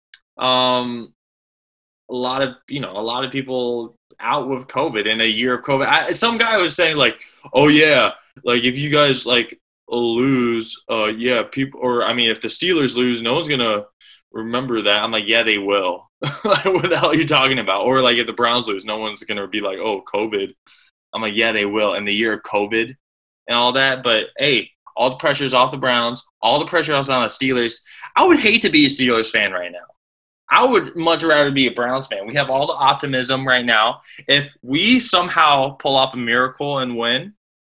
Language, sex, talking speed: English, male, 215 wpm